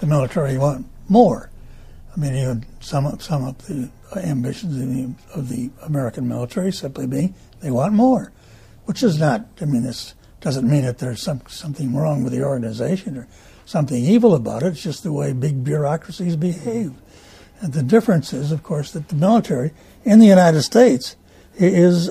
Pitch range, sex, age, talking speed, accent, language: 135-190 Hz, male, 60-79, 170 wpm, American, English